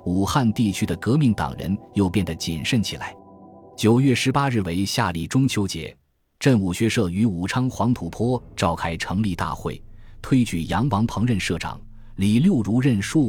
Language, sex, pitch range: Chinese, male, 90-115 Hz